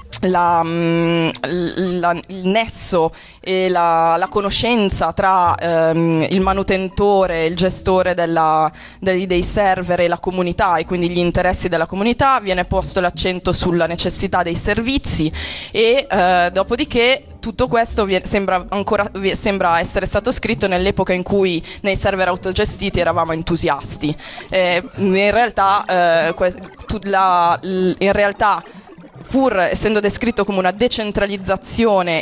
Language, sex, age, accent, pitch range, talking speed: Italian, female, 20-39, native, 170-195 Hz, 135 wpm